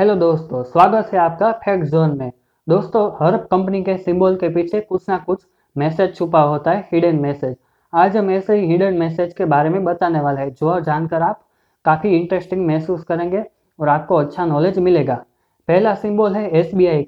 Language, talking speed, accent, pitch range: Hindi, 180 wpm, native, 160-195 Hz